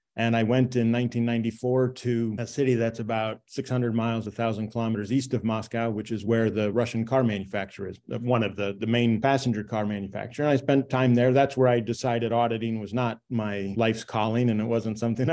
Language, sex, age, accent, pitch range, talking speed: English, male, 30-49, American, 110-125 Hz, 205 wpm